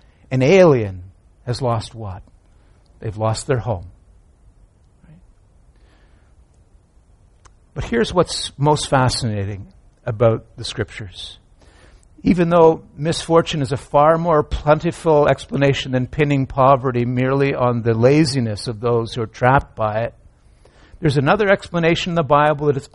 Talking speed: 125 wpm